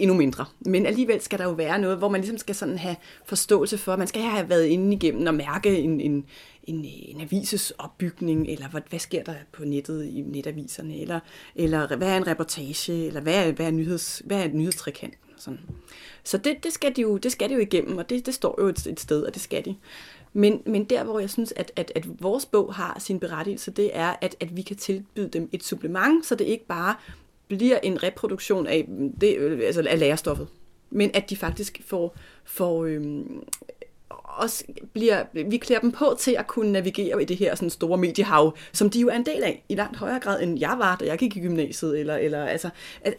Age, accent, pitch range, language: 30-49, native, 165-220 Hz, Danish